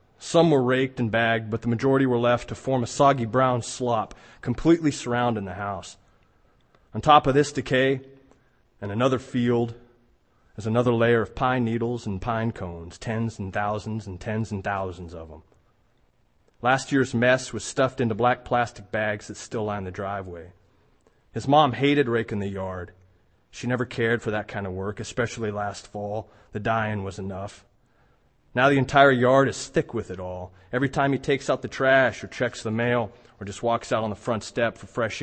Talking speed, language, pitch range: 190 wpm, English, 100-125 Hz